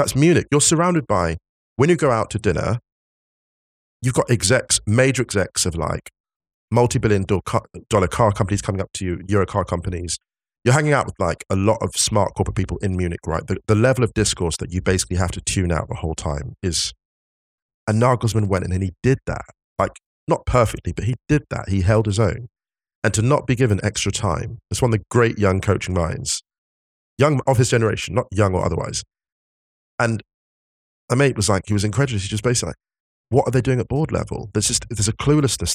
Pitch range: 85-115 Hz